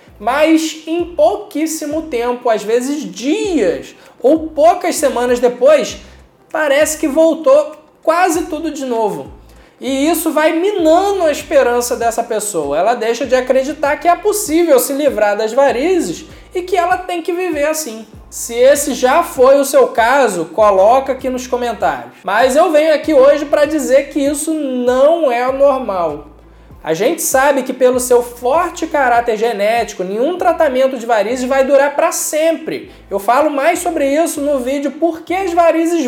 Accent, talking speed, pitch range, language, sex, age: Brazilian, 160 wpm, 250-325 Hz, Portuguese, male, 20-39